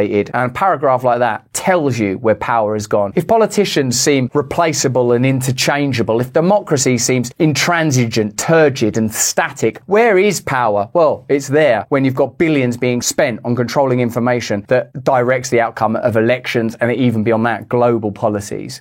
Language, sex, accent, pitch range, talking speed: English, male, British, 125-180 Hz, 165 wpm